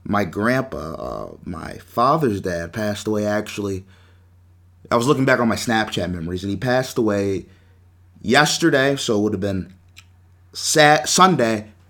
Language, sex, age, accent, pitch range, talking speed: English, male, 30-49, American, 90-125 Hz, 145 wpm